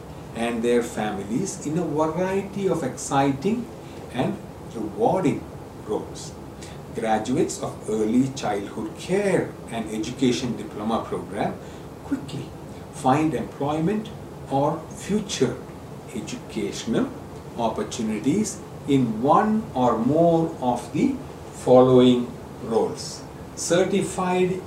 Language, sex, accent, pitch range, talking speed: English, male, Indian, 120-170 Hz, 90 wpm